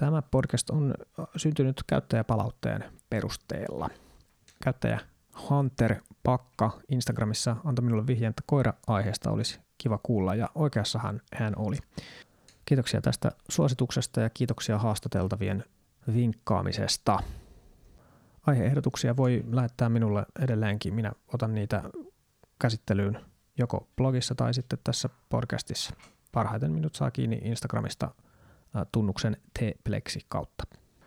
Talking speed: 100 wpm